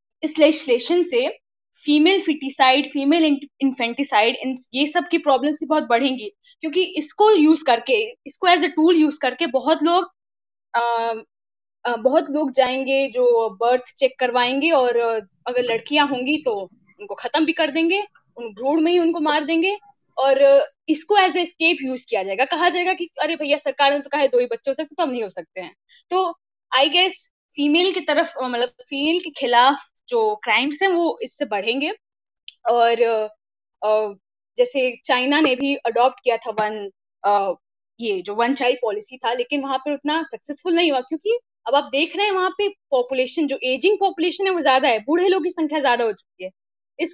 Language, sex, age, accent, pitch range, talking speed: Hindi, female, 10-29, native, 245-340 Hz, 175 wpm